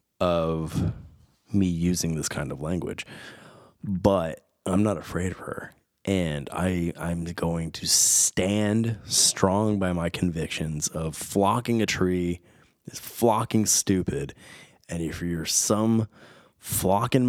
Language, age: English, 20-39